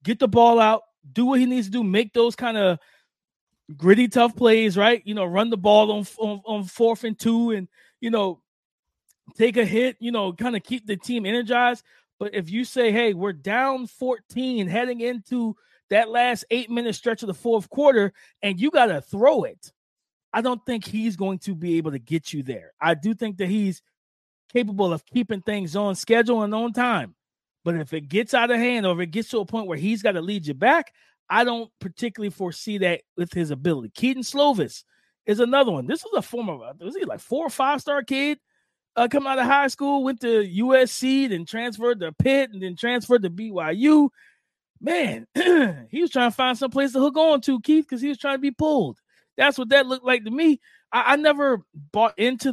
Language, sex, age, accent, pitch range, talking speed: English, male, 20-39, American, 200-255 Hz, 215 wpm